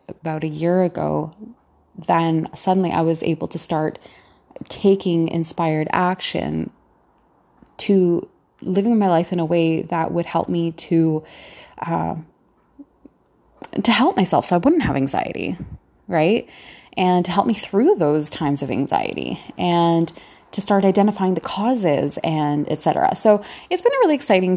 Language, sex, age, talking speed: English, female, 20-39, 145 wpm